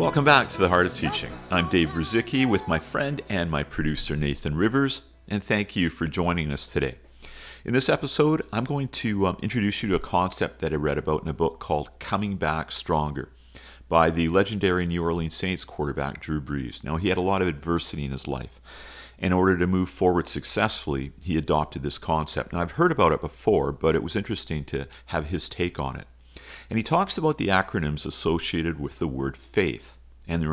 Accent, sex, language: American, male, English